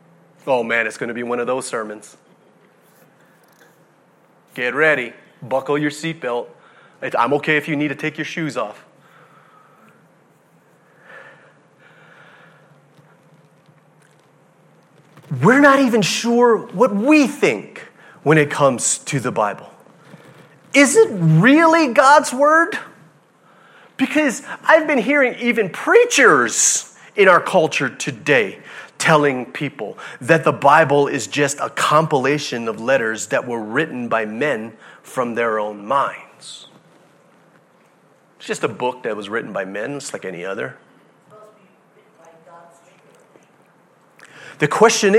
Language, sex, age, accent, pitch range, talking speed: English, male, 30-49, American, 140-220 Hz, 115 wpm